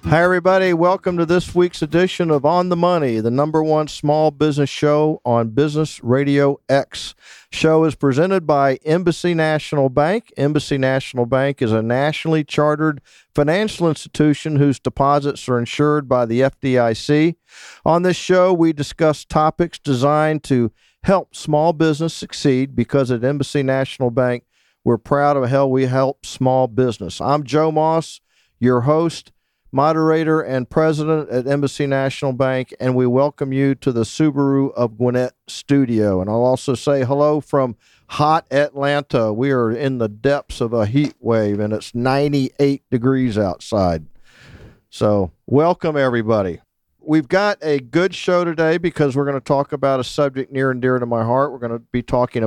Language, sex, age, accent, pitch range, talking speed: English, male, 50-69, American, 125-155 Hz, 160 wpm